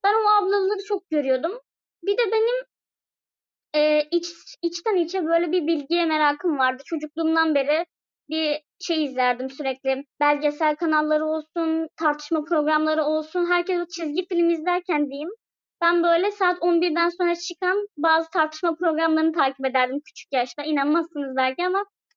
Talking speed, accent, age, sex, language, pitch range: 135 wpm, native, 20-39, male, Turkish, 290-355 Hz